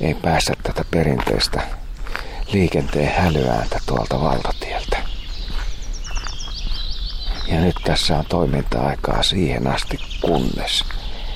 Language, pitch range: Finnish, 75-90 Hz